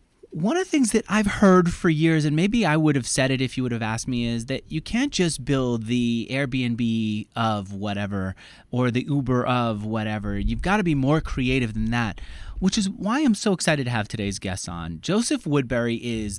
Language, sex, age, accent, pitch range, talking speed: English, male, 30-49, American, 105-170 Hz, 215 wpm